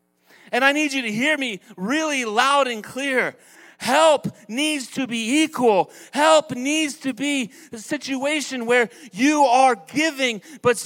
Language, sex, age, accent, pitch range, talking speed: English, male, 40-59, American, 190-280 Hz, 150 wpm